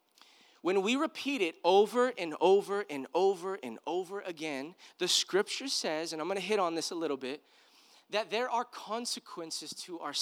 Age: 20-39